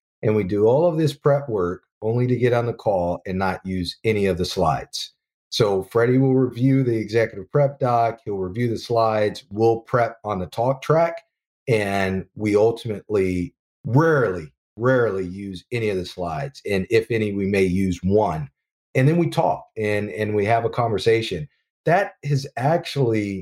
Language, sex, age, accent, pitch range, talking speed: English, male, 40-59, American, 95-125 Hz, 175 wpm